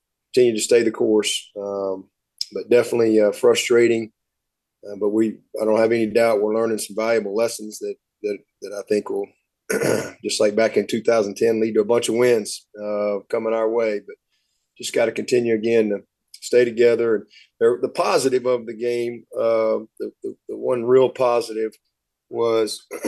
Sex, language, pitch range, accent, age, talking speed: male, English, 105-120 Hz, American, 30-49, 175 wpm